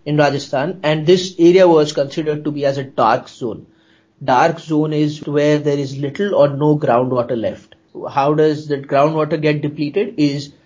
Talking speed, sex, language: 175 wpm, male, English